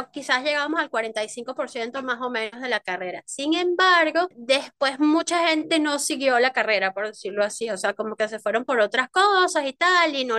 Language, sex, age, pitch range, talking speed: Spanish, female, 20-39, 230-305 Hz, 200 wpm